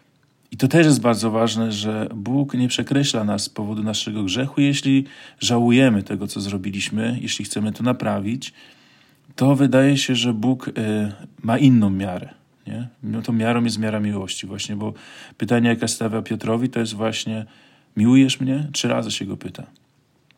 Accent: native